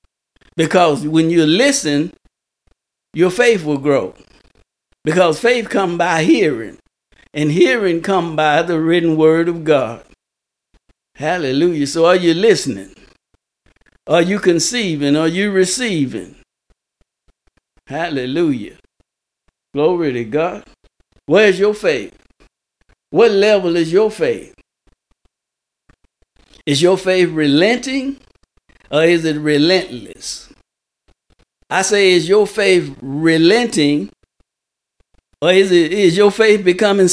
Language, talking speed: English, 105 wpm